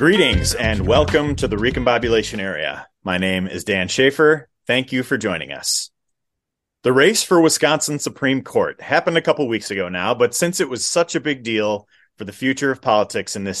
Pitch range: 100-135 Hz